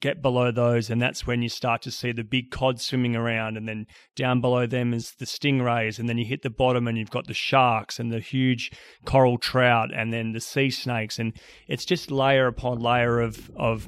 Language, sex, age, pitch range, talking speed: English, male, 30-49, 115-130 Hz, 225 wpm